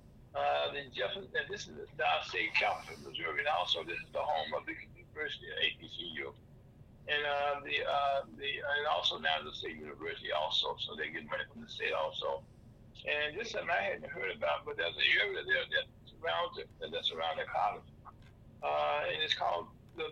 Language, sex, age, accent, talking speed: English, male, 60-79, American, 195 wpm